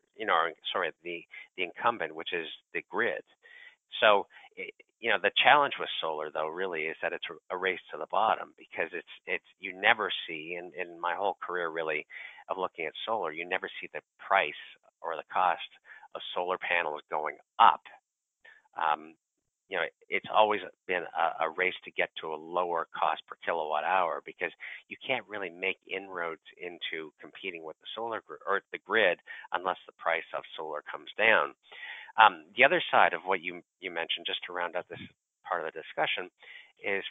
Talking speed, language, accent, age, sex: 185 wpm, English, American, 50-69, male